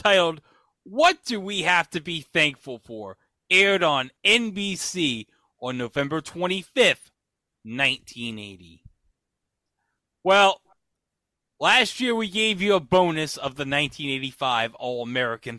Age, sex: 30-49, male